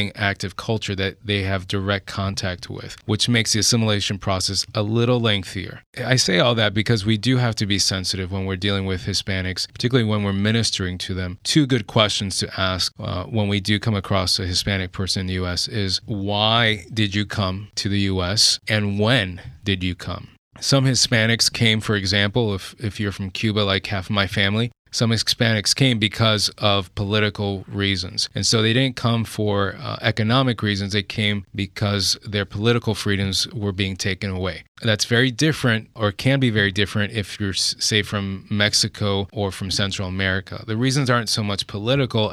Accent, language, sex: American, English, male